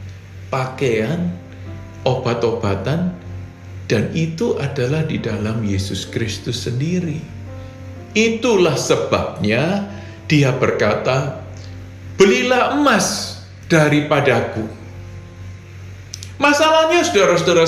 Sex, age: male, 50-69